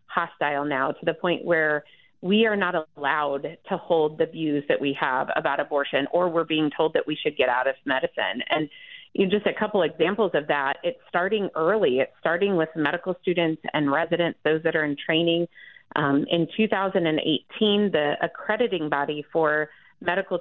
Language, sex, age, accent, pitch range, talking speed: English, female, 30-49, American, 150-180 Hz, 175 wpm